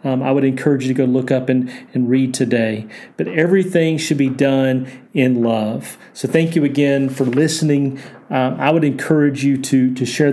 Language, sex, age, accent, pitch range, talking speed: English, male, 40-59, American, 130-140 Hz, 200 wpm